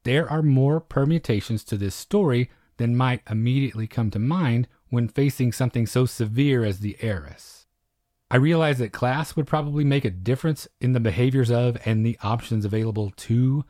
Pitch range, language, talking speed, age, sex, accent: 110-135 Hz, English, 170 wpm, 30-49, male, American